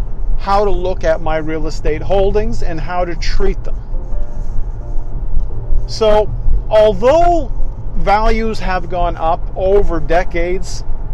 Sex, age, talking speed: male, 50-69, 115 wpm